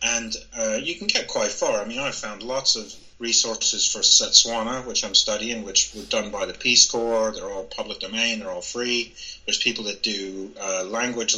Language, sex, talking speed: English, male, 205 wpm